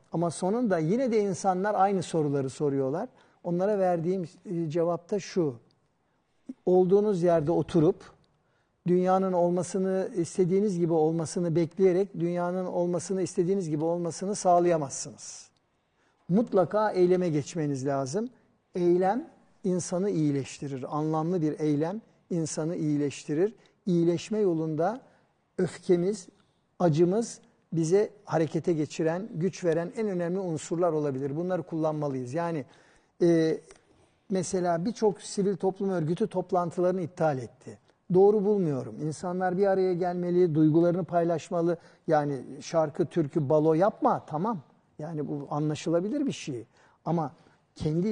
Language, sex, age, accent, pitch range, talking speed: Turkish, male, 50-69, native, 155-190 Hz, 105 wpm